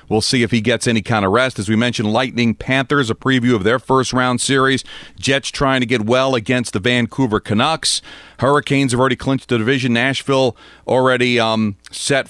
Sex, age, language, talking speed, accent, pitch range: male, 40-59, English, 190 wpm, American, 105-130 Hz